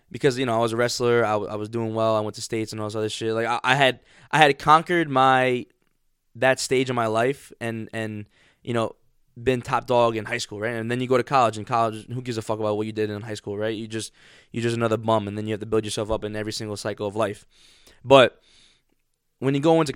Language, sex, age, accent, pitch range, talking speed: English, male, 20-39, American, 105-125 Hz, 275 wpm